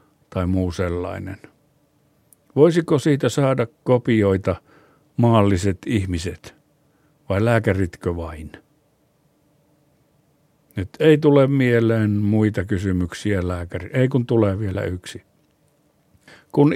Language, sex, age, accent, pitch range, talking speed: Finnish, male, 60-79, native, 105-145 Hz, 90 wpm